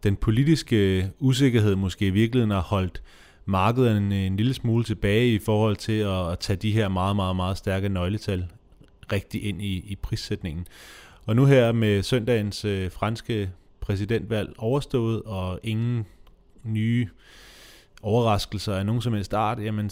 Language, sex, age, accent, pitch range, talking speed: Danish, male, 30-49, native, 90-110 Hz, 145 wpm